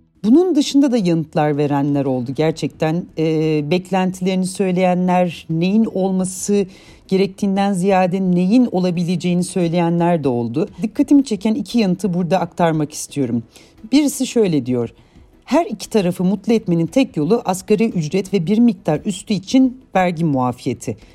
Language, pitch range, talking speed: Turkish, 150-215 Hz, 130 wpm